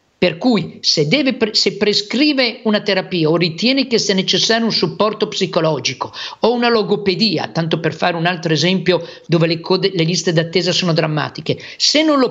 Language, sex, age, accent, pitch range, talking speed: Italian, male, 50-69, native, 180-245 Hz, 165 wpm